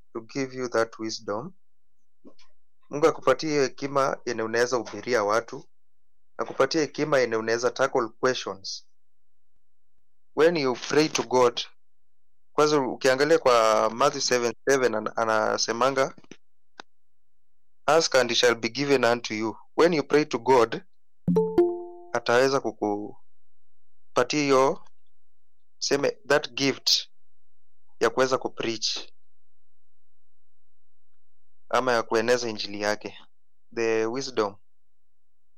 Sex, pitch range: male, 110-145 Hz